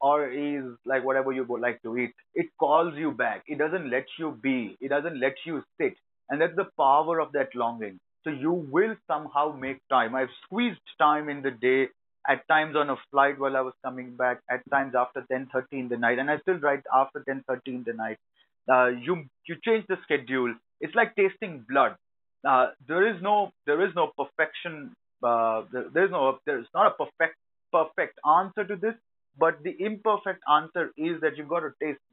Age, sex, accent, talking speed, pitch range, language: 30-49, male, Indian, 200 wpm, 130-180 Hz, English